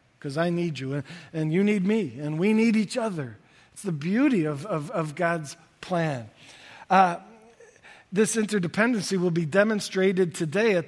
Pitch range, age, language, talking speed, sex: 160-210 Hz, 50-69, English, 165 wpm, male